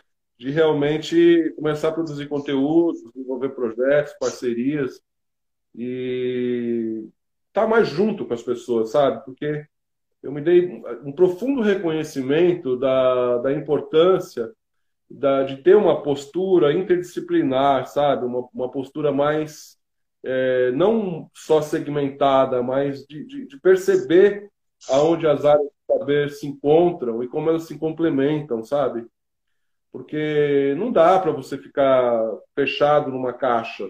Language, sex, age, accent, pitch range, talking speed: Portuguese, male, 20-39, Brazilian, 125-160 Hz, 120 wpm